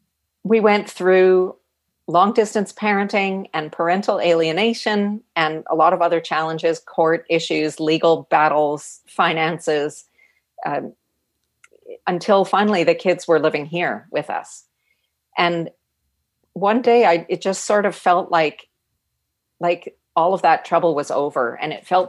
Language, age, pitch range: English, 40-59, 155-200 Hz